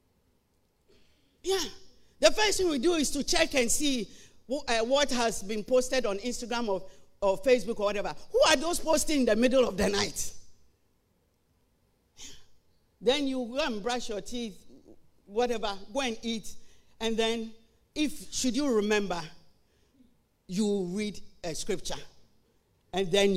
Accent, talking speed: Nigerian, 150 wpm